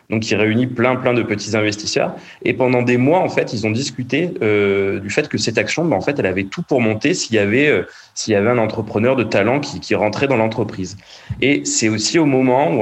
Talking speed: 250 wpm